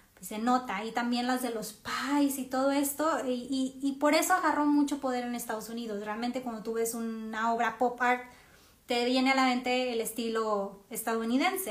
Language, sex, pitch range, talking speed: Spanish, female, 220-265 Hz, 190 wpm